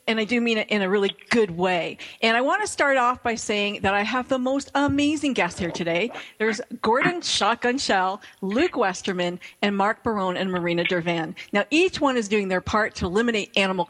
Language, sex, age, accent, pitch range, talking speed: English, female, 50-69, American, 195-260 Hz, 210 wpm